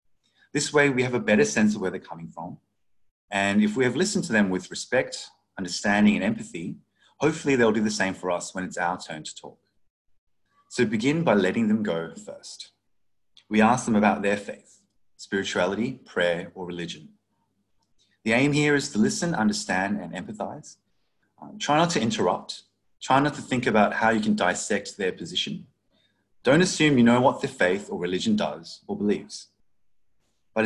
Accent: Australian